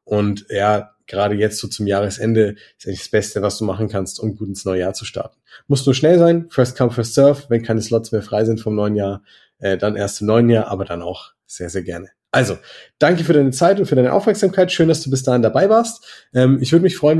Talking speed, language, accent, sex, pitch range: 245 wpm, German, German, male, 110-130 Hz